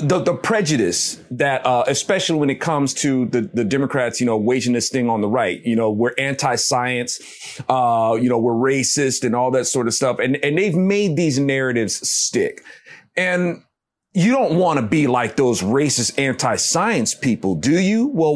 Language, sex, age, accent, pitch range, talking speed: English, male, 30-49, American, 130-180 Hz, 185 wpm